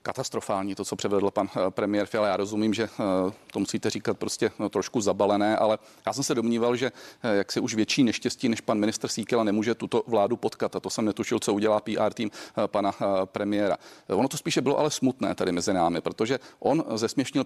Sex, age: male, 40-59